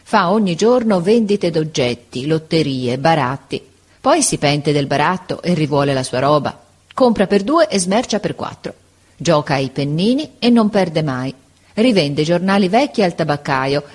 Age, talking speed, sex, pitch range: 40-59, 155 wpm, female, 140-200 Hz